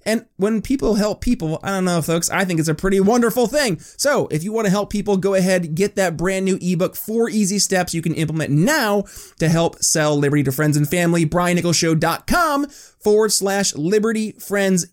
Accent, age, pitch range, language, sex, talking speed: American, 30-49, 165-225 Hz, English, male, 200 wpm